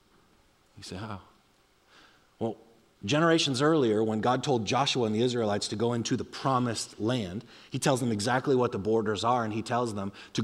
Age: 30-49